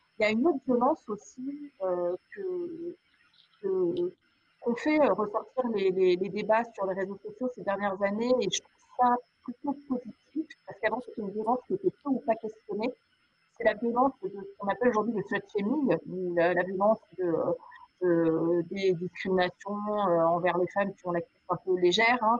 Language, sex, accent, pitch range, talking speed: French, female, French, 190-245 Hz, 175 wpm